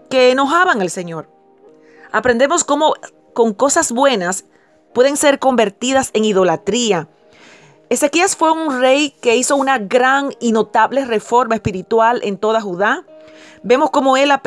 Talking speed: 135 wpm